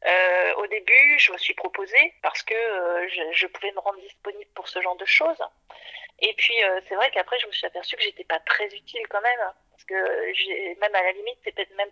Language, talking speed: French, 235 wpm